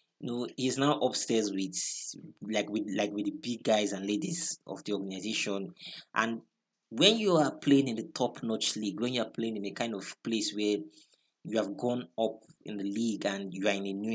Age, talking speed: 20-39, 215 wpm